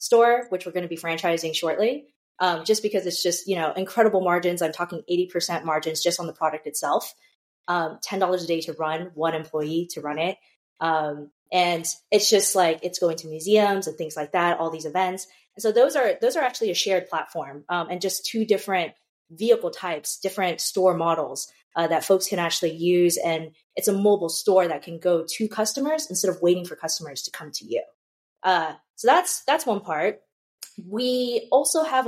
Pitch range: 165-210 Hz